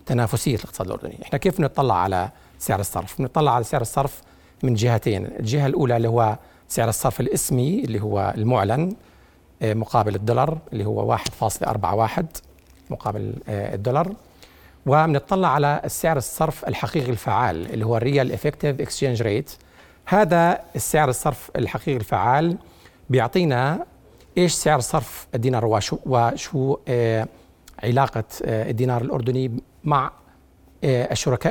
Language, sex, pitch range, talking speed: Arabic, male, 110-145 Hz, 115 wpm